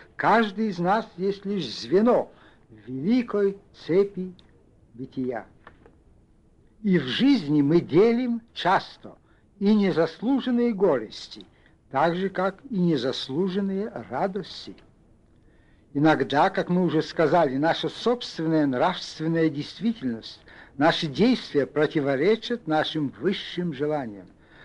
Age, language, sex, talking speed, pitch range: 60-79, Russian, male, 95 wpm, 150-205 Hz